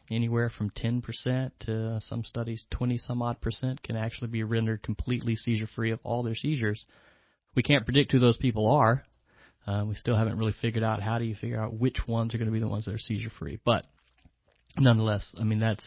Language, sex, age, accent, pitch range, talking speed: English, male, 30-49, American, 105-120 Hz, 205 wpm